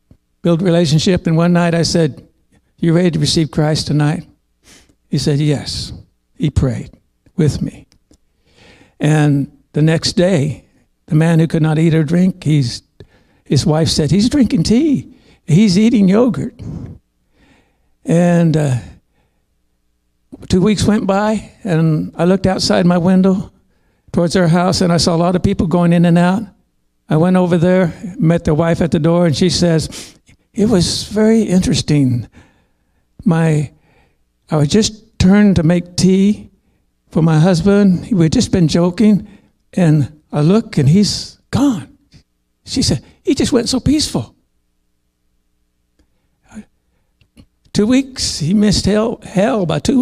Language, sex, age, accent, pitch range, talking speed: English, male, 60-79, American, 150-200 Hz, 145 wpm